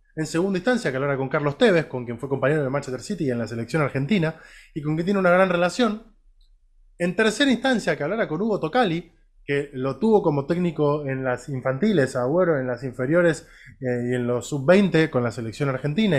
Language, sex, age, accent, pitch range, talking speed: Spanish, male, 20-39, Argentinian, 140-200 Hz, 210 wpm